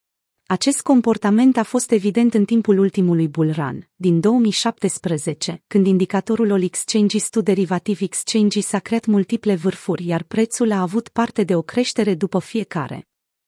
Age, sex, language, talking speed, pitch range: 30-49, female, Romanian, 130 wpm, 180-225 Hz